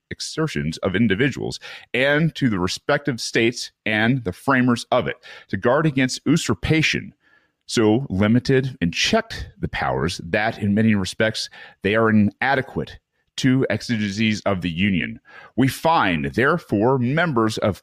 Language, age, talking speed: English, 40-59, 135 wpm